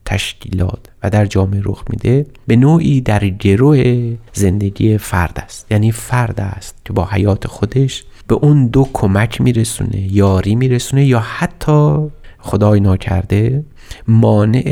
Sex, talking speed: male, 130 wpm